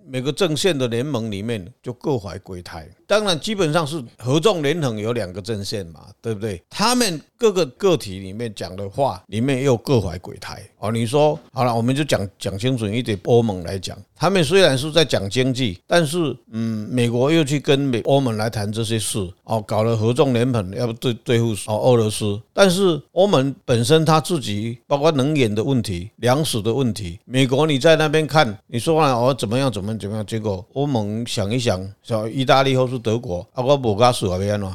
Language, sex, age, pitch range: Chinese, male, 50-69, 110-145 Hz